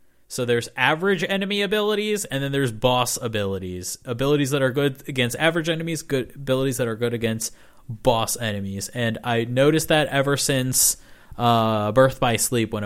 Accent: American